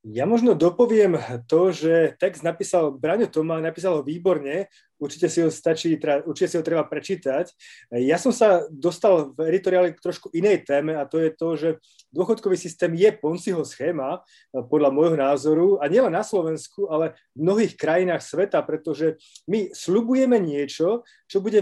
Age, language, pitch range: 30-49, Slovak, 160-195 Hz